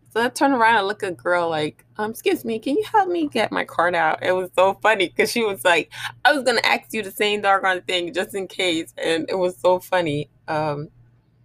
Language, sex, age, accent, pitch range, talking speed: English, female, 20-39, American, 150-220 Hz, 240 wpm